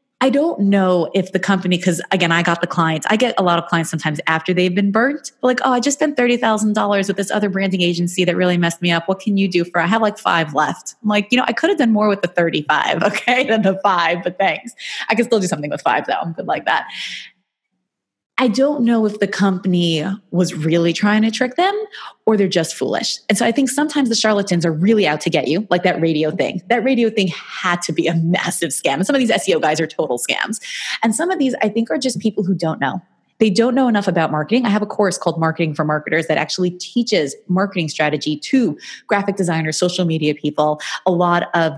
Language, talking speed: English, 245 wpm